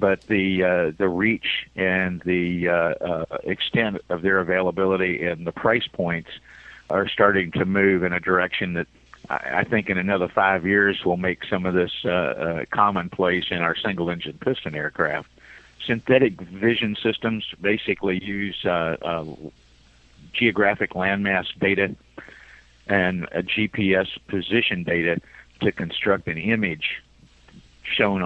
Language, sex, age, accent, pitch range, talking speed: English, male, 50-69, American, 85-95 Hz, 140 wpm